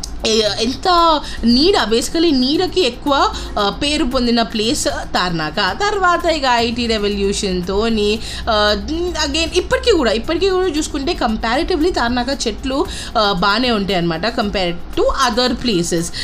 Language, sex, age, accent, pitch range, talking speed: Telugu, female, 20-39, native, 210-290 Hz, 105 wpm